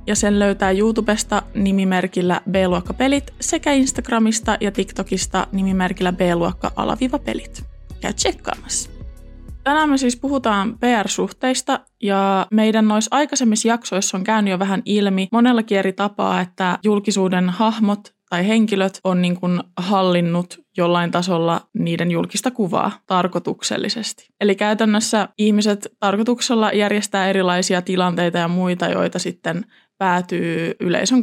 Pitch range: 185-235 Hz